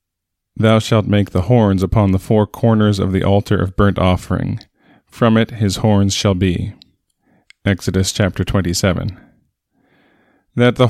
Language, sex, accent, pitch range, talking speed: English, male, American, 100-120 Hz, 145 wpm